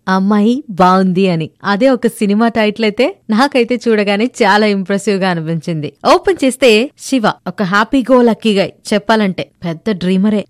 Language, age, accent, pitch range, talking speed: Telugu, 20-39, native, 195-255 Hz, 145 wpm